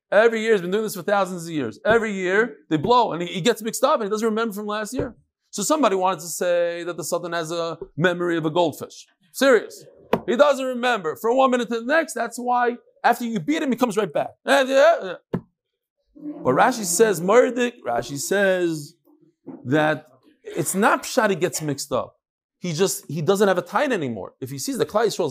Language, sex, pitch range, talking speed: English, male, 170-255 Hz, 220 wpm